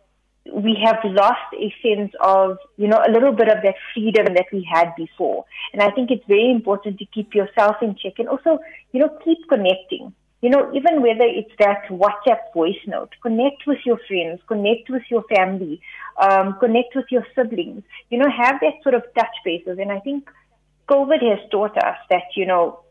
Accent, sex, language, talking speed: Indian, female, English, 195 wpm